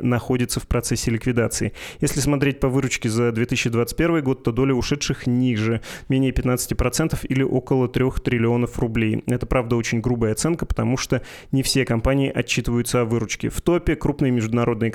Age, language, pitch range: 20-39, Russian, 115-130 Hz